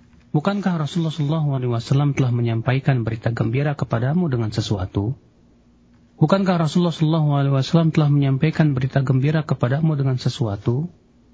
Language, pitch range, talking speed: Malay, 115-155 Hz, 125 wpm